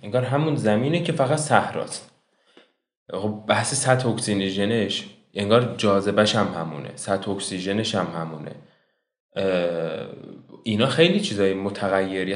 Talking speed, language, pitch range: 105 wpm, Persian, 95-125 Hz